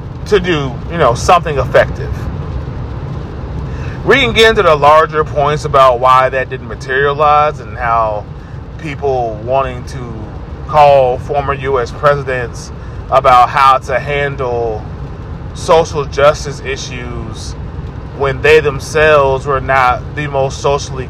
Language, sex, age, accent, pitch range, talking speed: English, male, 30-49, American, 120-145 Hz, 120 wpm